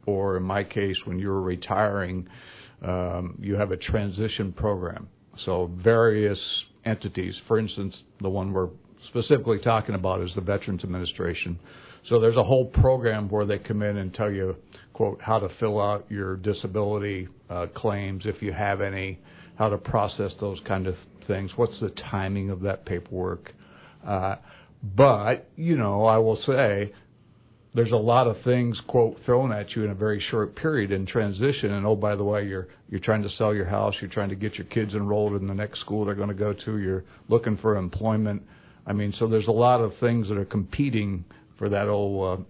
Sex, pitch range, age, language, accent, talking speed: male, 95-115 Hz, 60-79, English, American, 190 wpm